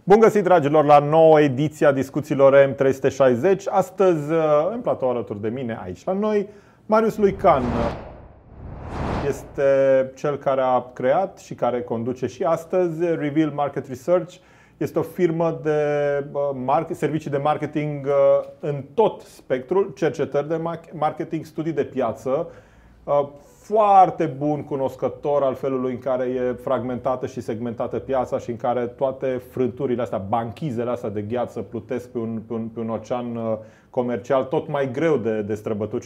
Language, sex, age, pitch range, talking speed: Romanian, male, 30-49, 120-160 Hz, 145 wpm